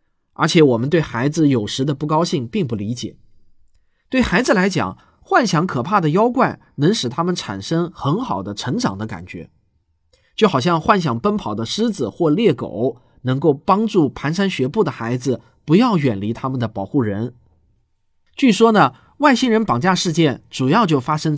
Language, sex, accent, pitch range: Chinese, male, native, 120-200 Hz